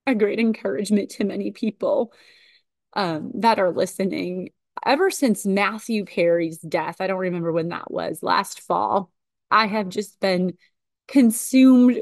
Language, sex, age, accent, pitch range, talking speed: English, female, 30-49, American, 170-210 Hz, 140 wpm